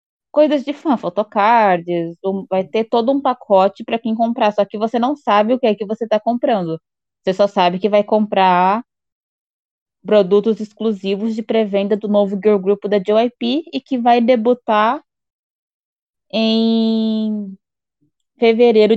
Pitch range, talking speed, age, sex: 200-235 Hz, 150 wpm, 20-39, female